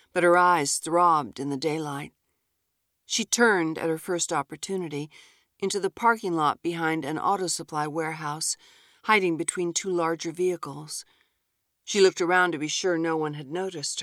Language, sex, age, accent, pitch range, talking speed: English, female, 50-69, American, 145-180 Hz, 160 wpm